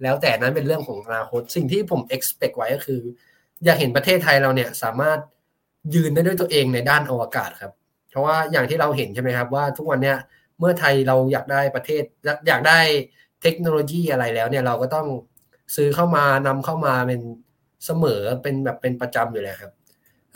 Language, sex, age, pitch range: Thai, male, 20-39, 130-165 Hz